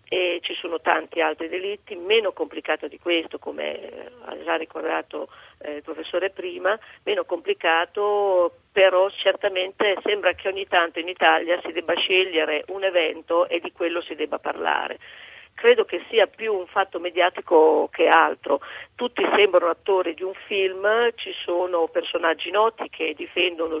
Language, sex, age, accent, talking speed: Italian, female, 40-59, native, 150 wpm